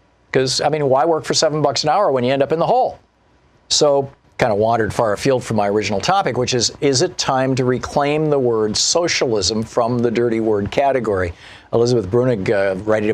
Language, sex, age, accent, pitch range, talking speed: English, male, 50-69, American, 110-145 Hz, 210 wpm